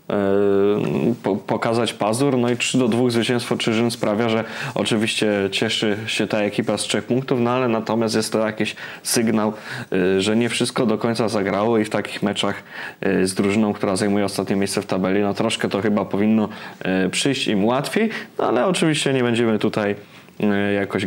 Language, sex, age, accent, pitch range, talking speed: Polish, male, 20-39, native, 105-125 Hz, 170 wpm